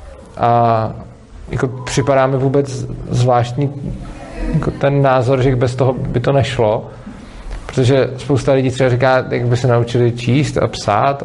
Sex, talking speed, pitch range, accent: male, 140 wpm, 115-135 Hz, native